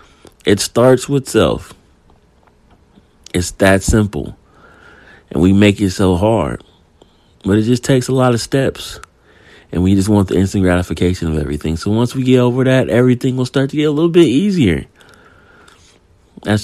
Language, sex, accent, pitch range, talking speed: English, male, American, 85-110 Hz, 165 wpm